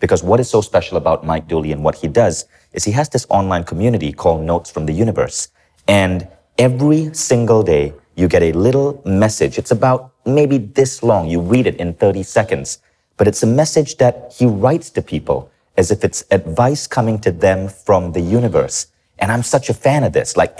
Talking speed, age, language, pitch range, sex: 205 wpm, 30-49, English, 80-125 Hz, male